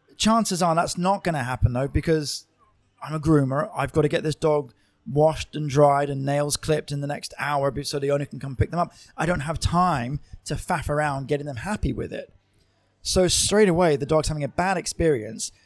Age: 20-39